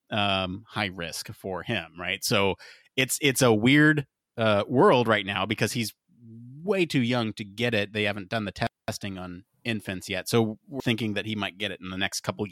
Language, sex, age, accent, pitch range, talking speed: English, male, 30-49, American, 100-125 Hz, 205 wpm